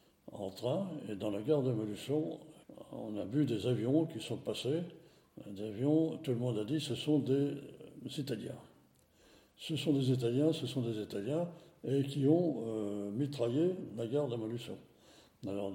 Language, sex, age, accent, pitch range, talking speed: French, male, 60-79, French, 115-155 Hz, 170 wpm